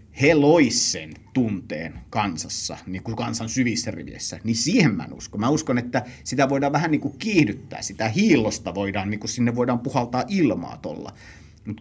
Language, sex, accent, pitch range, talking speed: Finnish, male, native, 100-125 Hz, 170 wpm